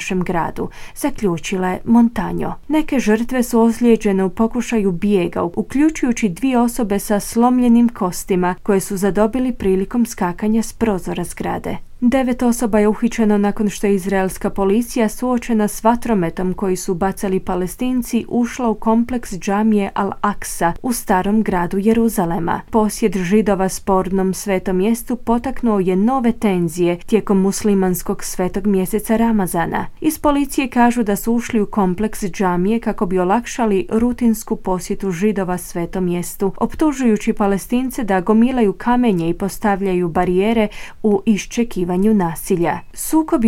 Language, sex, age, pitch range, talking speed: Croatian, female, 20-39, 190-230 Hz, 130 wpm